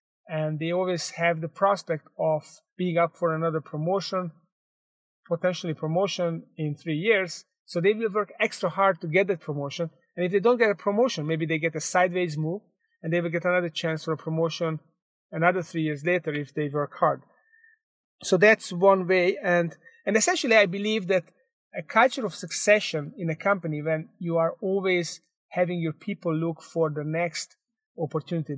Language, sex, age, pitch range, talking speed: English, male, 30-49, 160-195 Hz, 180 wpm